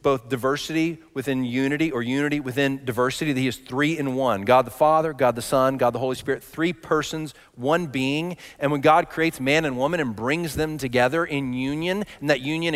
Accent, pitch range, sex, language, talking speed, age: American, 135-195 Hz, male, English, 205 wpm, 40-59